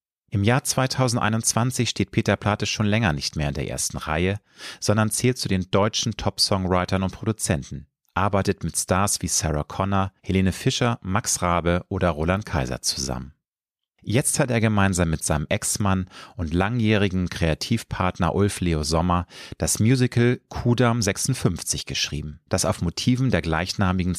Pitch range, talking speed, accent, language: 85-110 Hz, 145 wpm, German, German